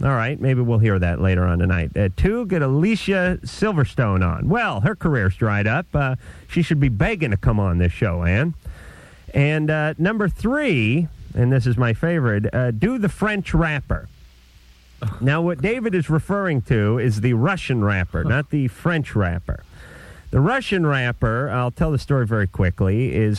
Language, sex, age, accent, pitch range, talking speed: English, male, 40-59, American, 105-145 Hz, 175 wpm